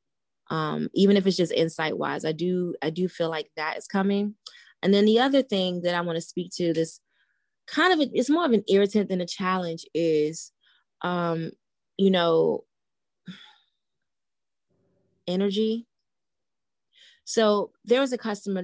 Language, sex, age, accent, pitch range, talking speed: English, female, 20-39, American, 175-210 Hz, 155 wpm